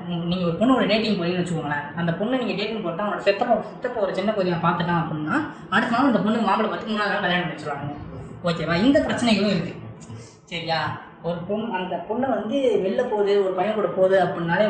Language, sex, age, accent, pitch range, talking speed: Tamil, female, 20-39, native, 170-215 Hz, 185 wpm